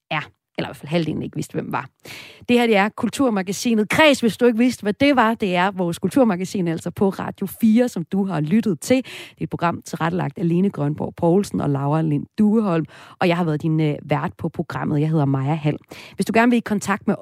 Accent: native